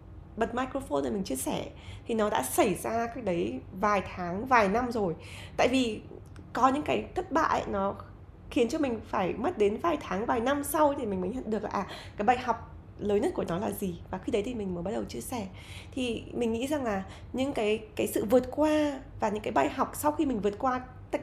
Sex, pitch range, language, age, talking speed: female, 180-260 Hz, Vietnamese, 20-39, 240 wpm